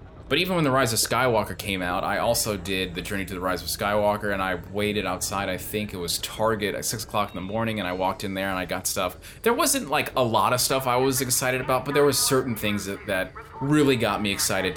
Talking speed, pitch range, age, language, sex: 265 wpm, 95-130 Hz, 20-39, English, male